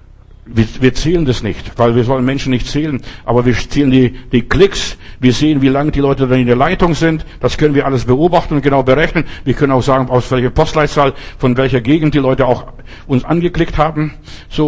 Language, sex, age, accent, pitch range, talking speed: German, male, 60-79, German, 125-170 Hz, 215 wpm